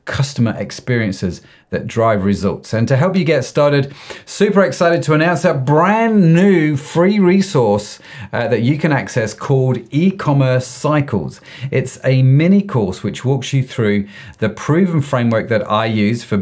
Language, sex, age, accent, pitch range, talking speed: English, male, 40-59, British, 110-160 Hz, 155 wpm